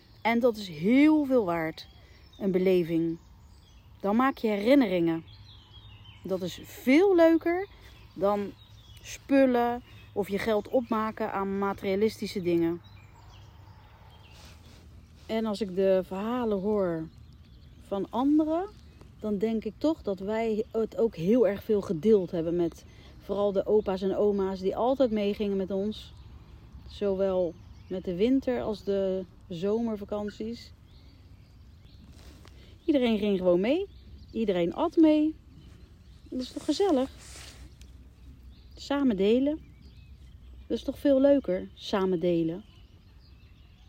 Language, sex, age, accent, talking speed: Dutch, female, 40-59, Dutch, 115 wpm